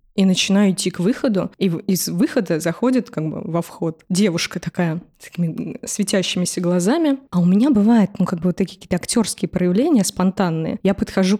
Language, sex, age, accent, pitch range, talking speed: Russian, female, 20-39, native, 180-215 Hz, 180 wpm